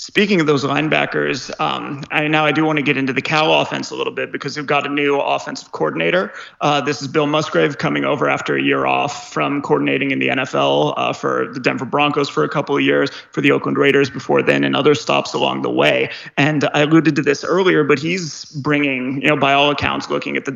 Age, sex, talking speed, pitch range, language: 30-49, male, 235 wpm, 140-155 Hz, English